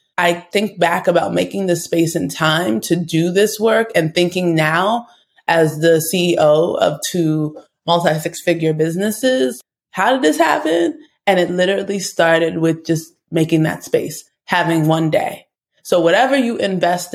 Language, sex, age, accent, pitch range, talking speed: English, female, 20-39, American, 165-195 Hz, 155 wpm